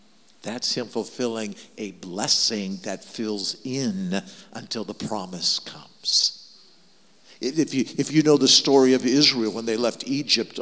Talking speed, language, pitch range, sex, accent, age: 135 wpm, English, 105-135 Hz, male, American, 60-79